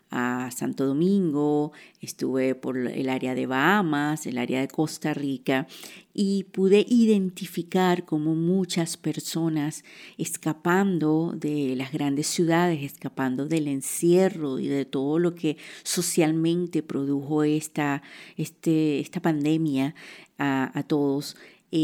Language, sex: English, female